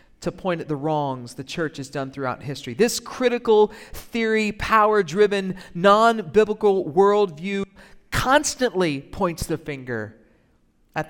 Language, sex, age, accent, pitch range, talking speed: English, male, 50-69, American, 145-215 Hz, 120 wpm